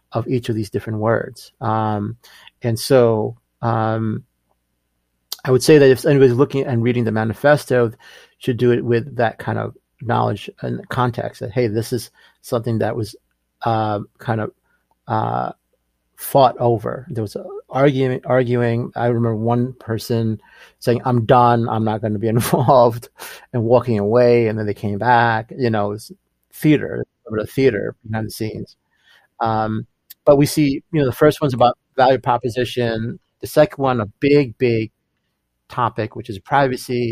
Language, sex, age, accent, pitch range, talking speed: English, male, 40-59, American, 110-130 Hz, 165 wpm